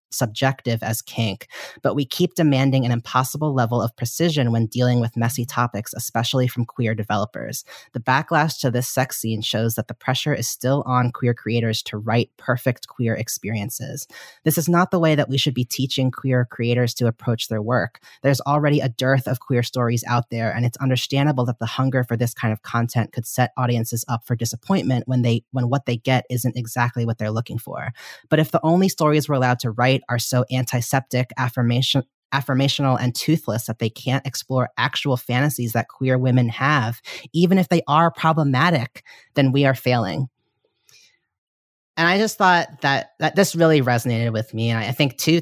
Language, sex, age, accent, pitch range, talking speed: English, female, 30-49, American, 120-140 Hz, 190 wpm